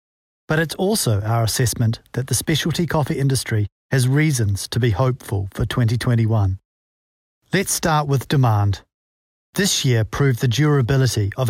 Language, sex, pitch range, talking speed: English, male, 110-145 Hz, 140 wpm